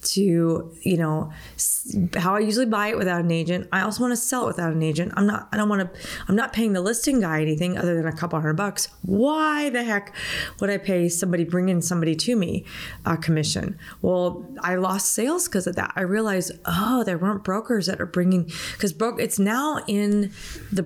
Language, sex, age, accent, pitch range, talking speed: English, female, 30-49, American, 165-205 Hz, 215 wpm